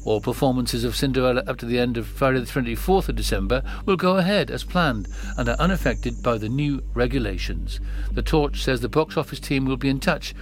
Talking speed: 215 wpm